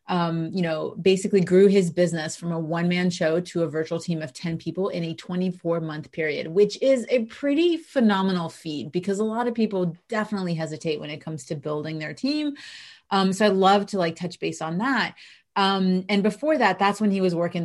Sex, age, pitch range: female, 30-49, 170-215 Hz